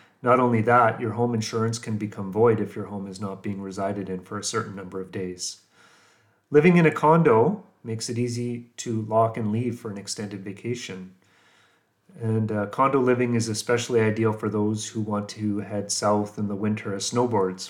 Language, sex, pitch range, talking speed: English, male, 105-120 Hz, 195 wpm